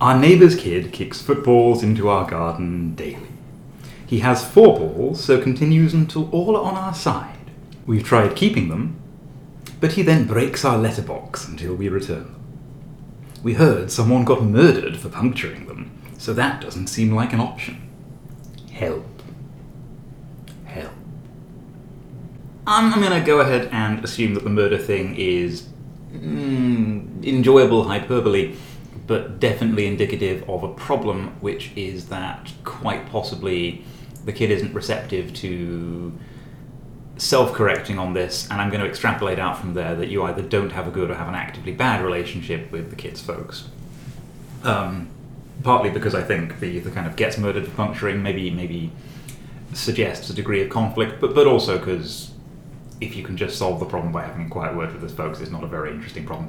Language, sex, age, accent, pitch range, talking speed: English, male, 30-49, British, 100-145 Hz, 165 wpm